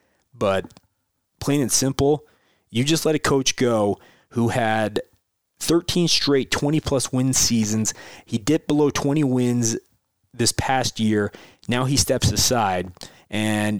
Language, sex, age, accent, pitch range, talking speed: English, male, 20-39, American, 110-140 Hz, 130 wpm